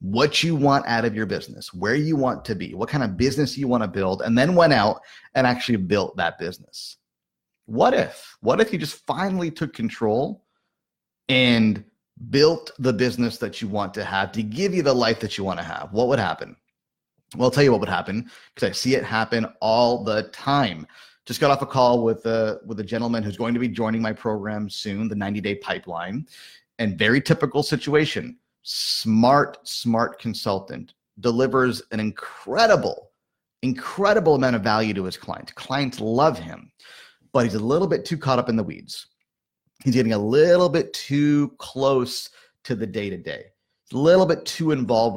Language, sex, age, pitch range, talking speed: English, male, 30-49, 110-145 Hz, 185 wpm